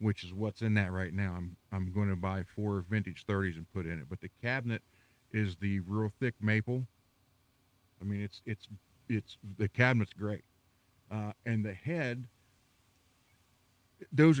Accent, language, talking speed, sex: American, English, 170 wpm, male